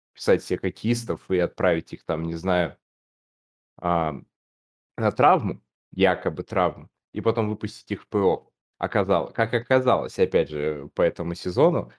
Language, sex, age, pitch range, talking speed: Russian, male, 20-39, 90-105 Hz, 135 wpm